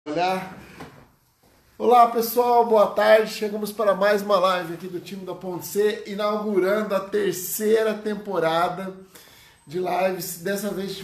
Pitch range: 165-195 Hz